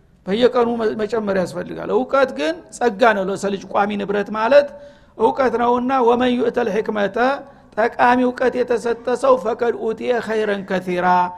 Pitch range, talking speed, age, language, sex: 205-245 Hz, 140 wpm, 50-69, Amharic, male